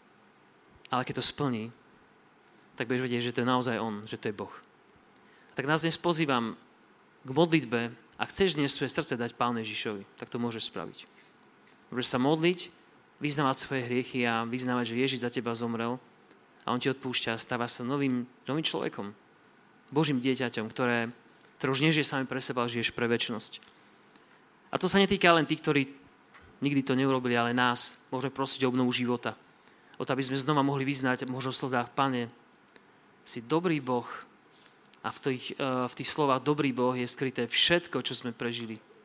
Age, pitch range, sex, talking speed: 30-49, 120-140 Hz, male, 175 wpm